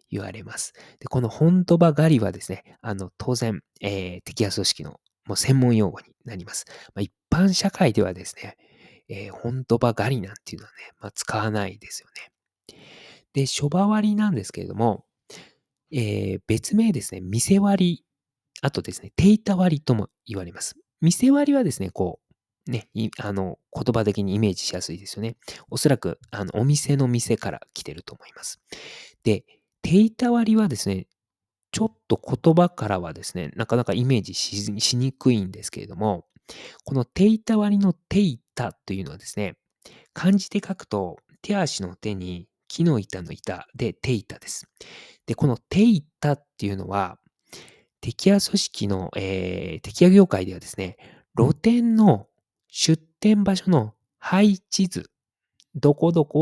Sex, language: male, Japanese